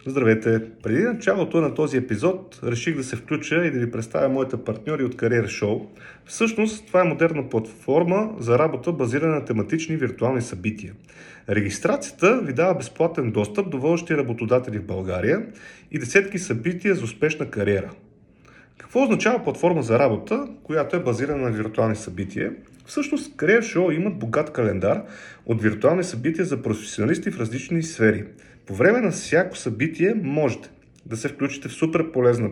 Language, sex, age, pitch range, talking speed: Bulgarian, male, 40-59, 115-170 Hz, 150 wpm